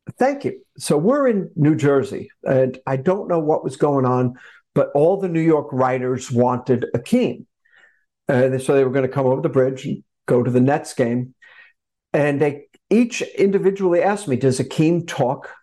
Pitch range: 130-190 Hz